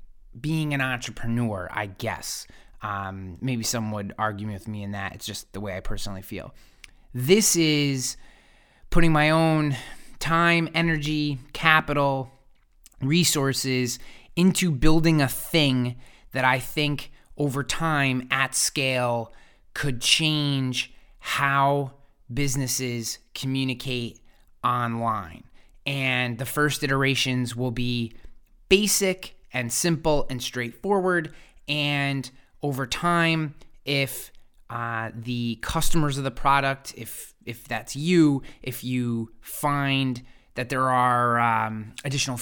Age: 20-39